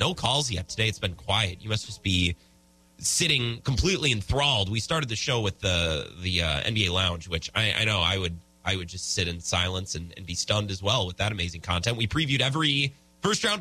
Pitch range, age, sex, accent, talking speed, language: 90-135 Hz, 30-49, male, American, 220 wpm, English